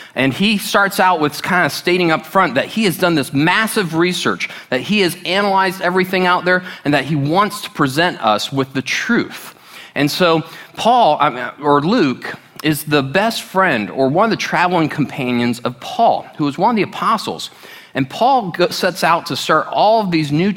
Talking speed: 195 wpm